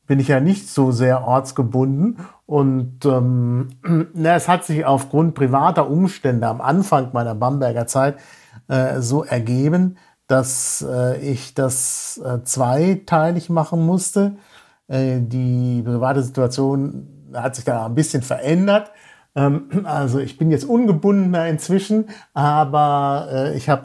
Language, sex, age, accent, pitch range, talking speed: German, male, 50-69, German, 125-160 Hz, 130 wpm